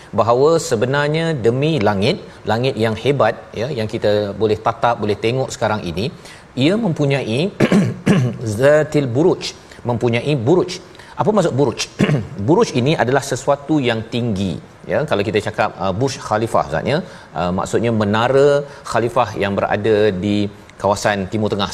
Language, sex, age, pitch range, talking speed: Malayalam, male, 40-59, 110-140 Hz, 135 wpm